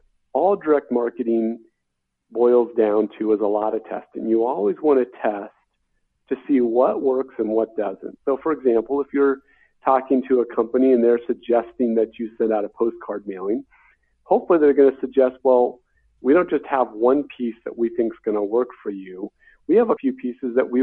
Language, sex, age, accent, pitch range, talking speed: English, male, 50-69, American, 110-135 Hz, 200 wpm